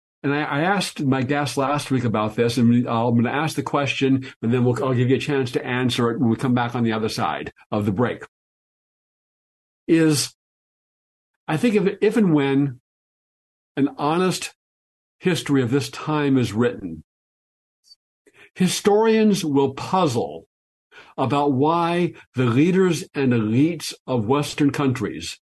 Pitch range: 125-160 Hz